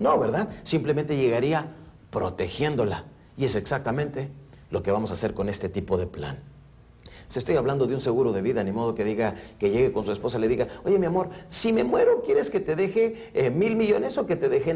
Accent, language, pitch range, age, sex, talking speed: Mexican, Spanish, 105-170 Hz, 50-69, male, 225 wpm